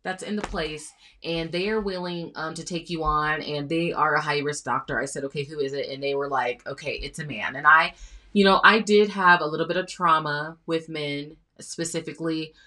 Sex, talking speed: female, 230 wpm